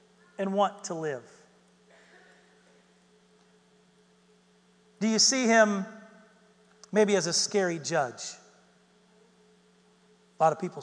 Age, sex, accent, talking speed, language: 40-59, male, American, 95 wpm, English